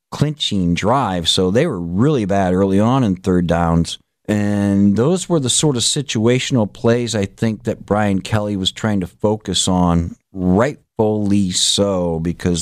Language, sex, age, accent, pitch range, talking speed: English, male, 50-69, American, 100-125 Hz, 155 wpm